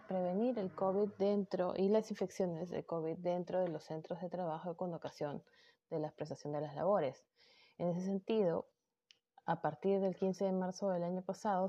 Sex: female